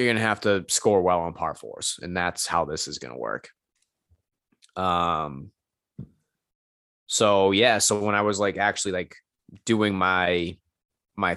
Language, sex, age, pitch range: English, male, 20-39, 85-110 Hz